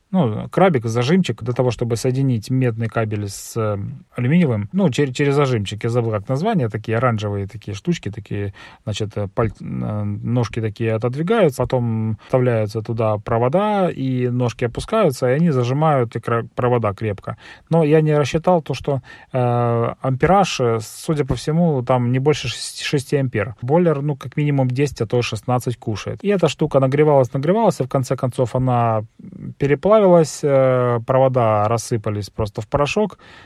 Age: 30-49